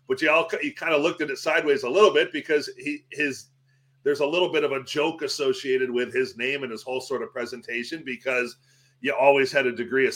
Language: English